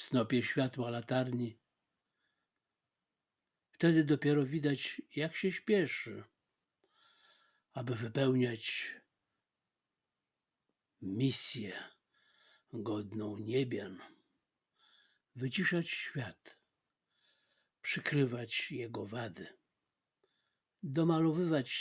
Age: 60-79